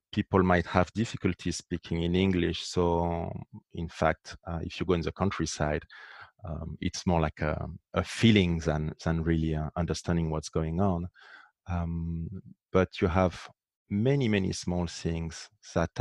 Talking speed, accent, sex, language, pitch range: 155 wpm, French, male, English, 85-95 Hz